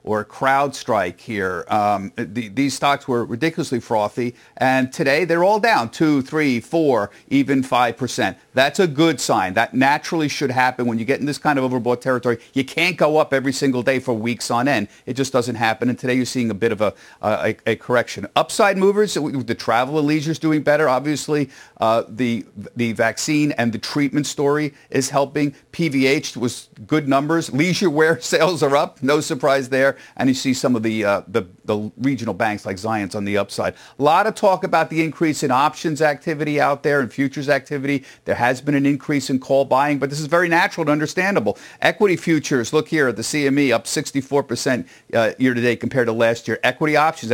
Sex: male